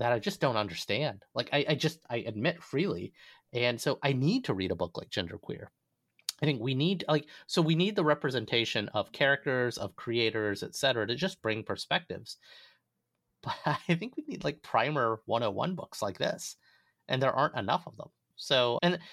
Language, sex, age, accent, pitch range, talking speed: English, male, 30-49, American, 105-145 Hz, 195 wpm